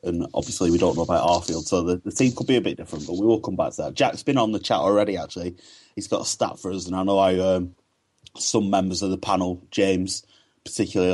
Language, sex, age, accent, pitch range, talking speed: English, male, 30-49, British, 90-100 Hz, 260 wpm